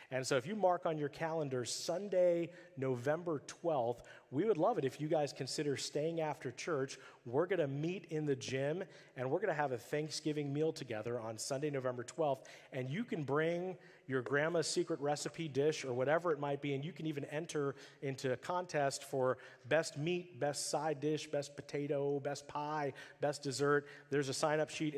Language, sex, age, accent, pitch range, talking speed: English, male, 40-59, American, 130-155 Hz, 190 wpm